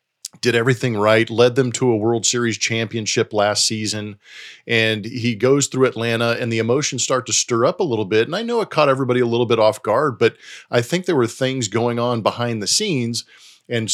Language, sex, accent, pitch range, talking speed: English, male, American, 110-130 Hz, 215 wpm